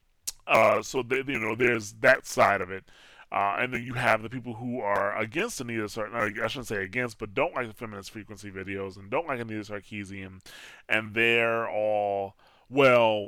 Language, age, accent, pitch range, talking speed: English, 20-39, American, 110-135 Hz, 190 wpm